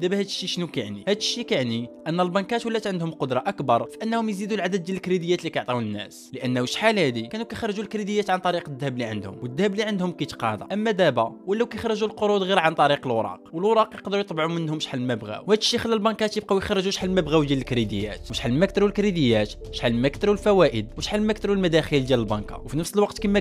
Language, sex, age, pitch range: Arabic, male, 20-39, 135-210 Hz